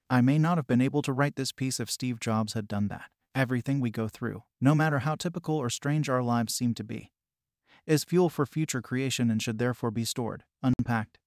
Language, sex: English, male